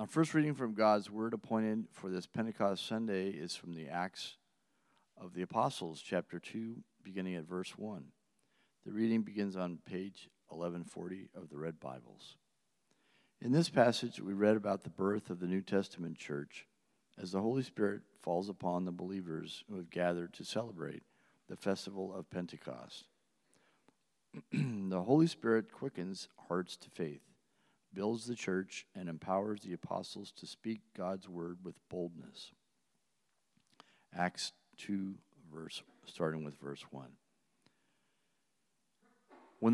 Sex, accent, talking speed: male, American, 140 wpm